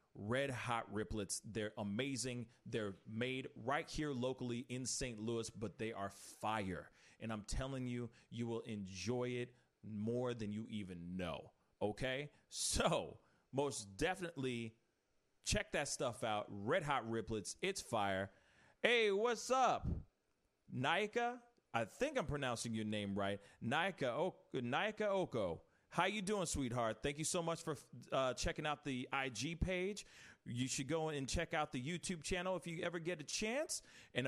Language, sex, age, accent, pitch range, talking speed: English, male, 40-59, American, 115-175 Hz, 160 wpm